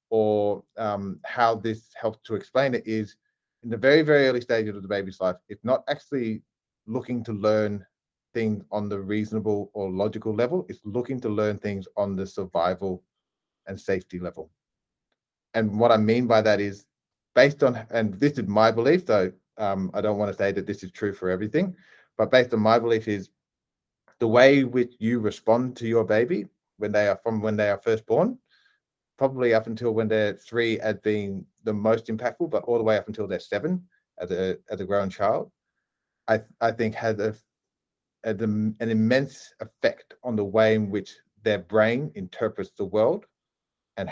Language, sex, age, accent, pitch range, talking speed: English, male, 30-49, Australian, 100-115 Hz, 190 wpm